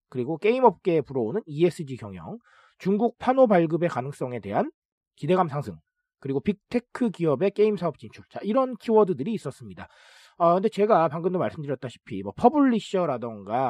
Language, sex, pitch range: Korean, male, 140-220 Hz